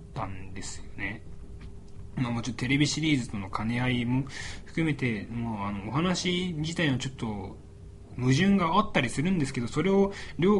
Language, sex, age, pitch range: Japanese, male, 20-39, 100-150 Hz